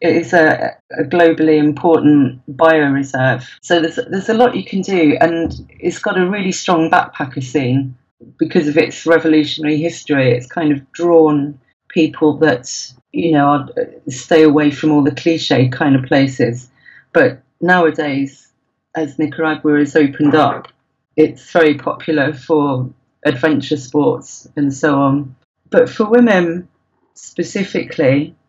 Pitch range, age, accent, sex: 140-170 Hz, 40-59, British, female